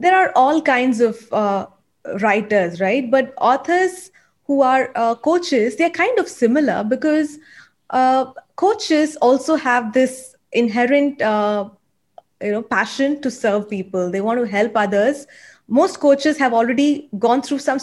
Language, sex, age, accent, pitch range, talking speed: English, female, 20-39, Indian, 210-270 Hz, 150 wpm